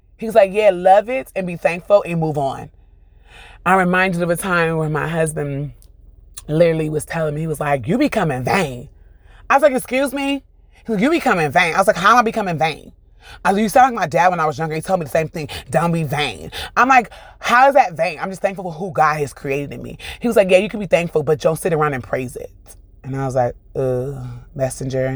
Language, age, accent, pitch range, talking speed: English, 30-49, American, 135-180 Hz, 255 wpm